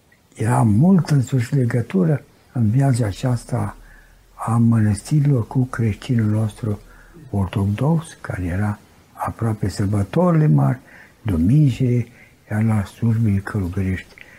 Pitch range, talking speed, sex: 105-140 Hz, 95 wpm, male